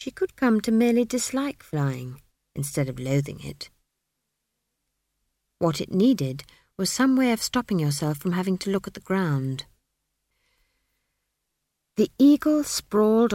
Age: 50-69